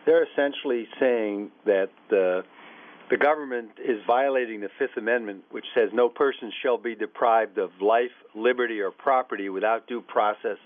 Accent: American